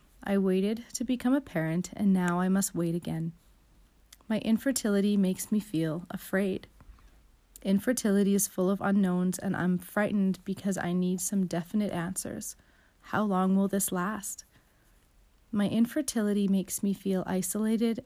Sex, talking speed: female, 145 wpm